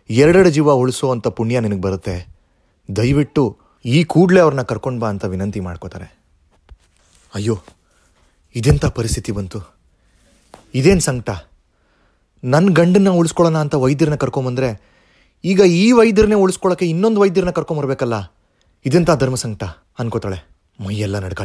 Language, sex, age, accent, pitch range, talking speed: Kannada, male, 30-49, native, 85-135 Hz, 110 wpm